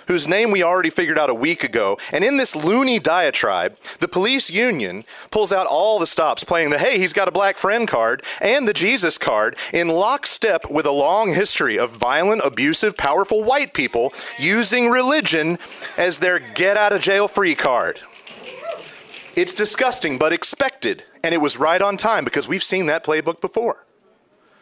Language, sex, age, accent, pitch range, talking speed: English, male, 30-49, American, 160-225 Hz, 180 wpm